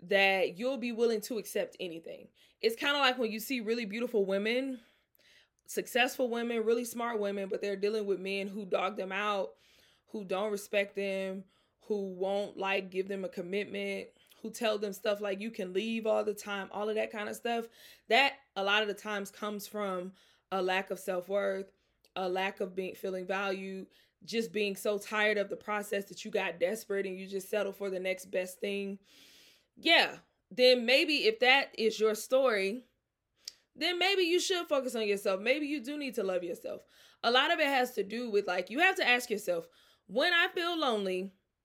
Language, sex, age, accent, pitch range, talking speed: English, female, 20-39, American, 195-245 Hz, 195 wpm